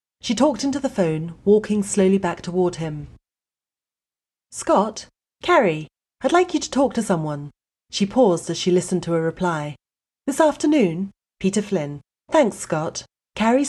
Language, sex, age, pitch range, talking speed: English, female, 40-59, 160-215 Hz, 150 wpm